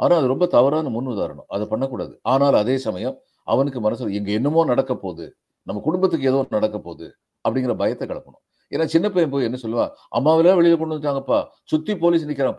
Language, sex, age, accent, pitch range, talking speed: Tamil, male, 50-69, native, 110-155 Hz, 180 wpm